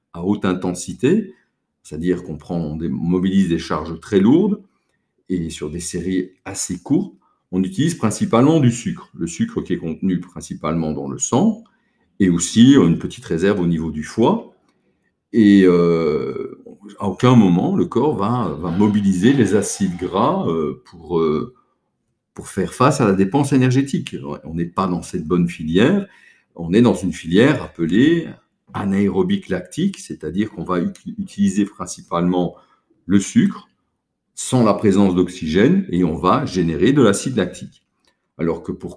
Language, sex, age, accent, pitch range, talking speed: French, male, 50-69, French, 90-120 Hz, 150 wpm